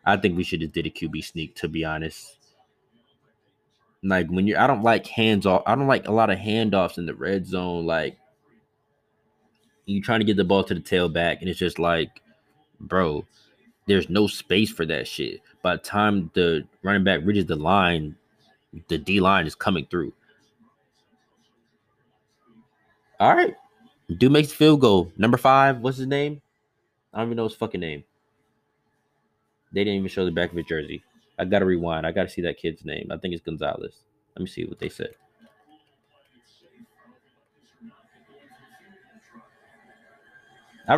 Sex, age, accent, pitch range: male, 20-39, American, 85-115 Hz